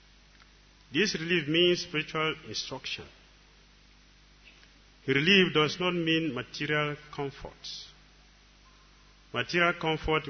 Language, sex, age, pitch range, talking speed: English, male, 40-59, 115-150 Hz, 75 wpm